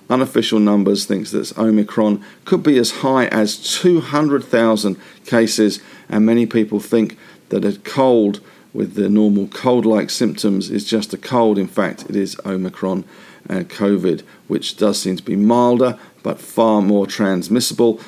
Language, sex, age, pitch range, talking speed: English, male, 50-69, 100-125 Hz, 150 wpm